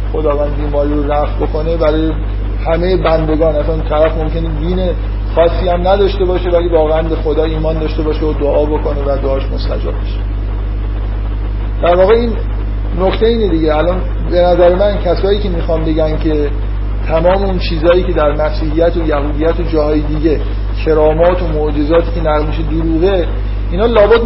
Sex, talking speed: male, 155 wpm